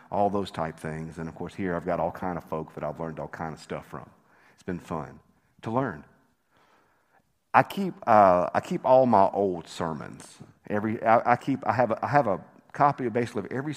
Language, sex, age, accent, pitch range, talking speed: English, male, 50-69, American, 90-130 Hz, 220 wpm